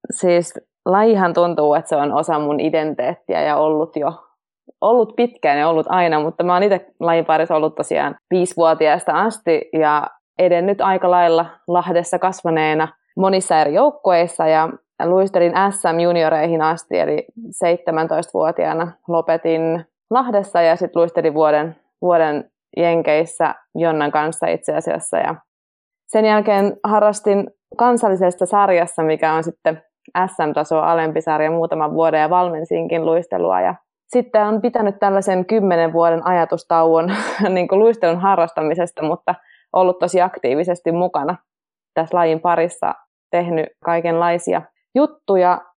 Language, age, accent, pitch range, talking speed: Finnish, 20-39, native, 165-190 Hz, 125 wpm